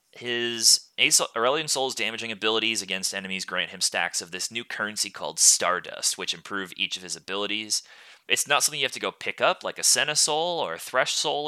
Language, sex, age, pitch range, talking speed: English, male, 30-49, 95-120 Hz, 200 wpm